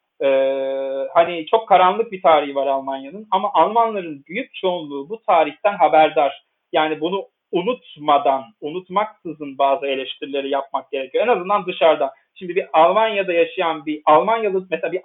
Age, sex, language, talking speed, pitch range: 40-59, male, Turkish, 135 wpm, 150-200 Hz